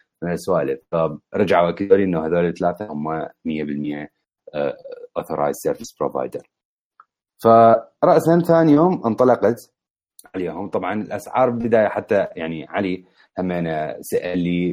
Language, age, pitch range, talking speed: Arabic, 30-49, 80-115 Hz, 110 wpm